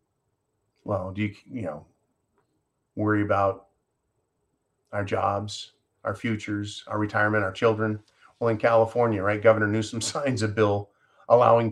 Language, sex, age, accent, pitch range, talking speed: English, male, 40-59, American, 105-120 Hz, 130 wpm